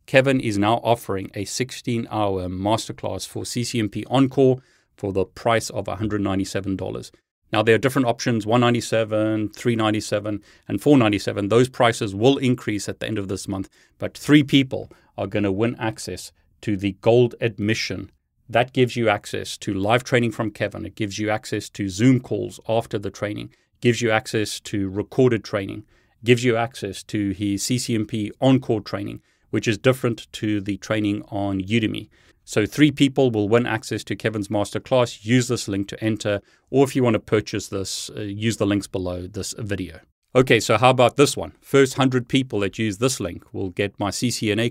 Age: 30-49